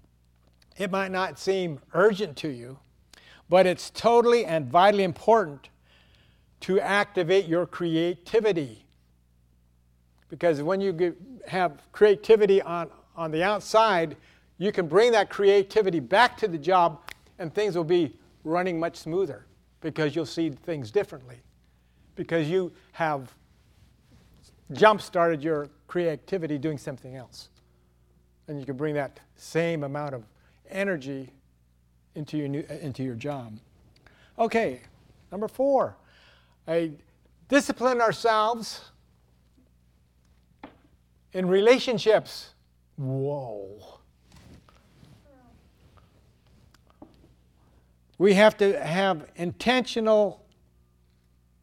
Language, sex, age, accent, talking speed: English, male, 60-79, American, 100 wpm